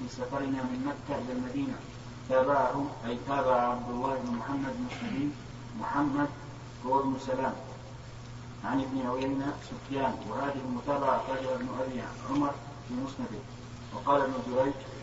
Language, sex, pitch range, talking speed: Arabic, male, 125-135 Hz, 130 wpm